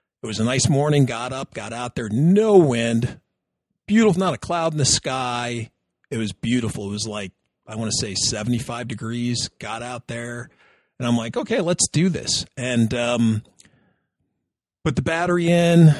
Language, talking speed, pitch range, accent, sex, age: English, 180 wpm, 110-135 Hz, American, male, 40-59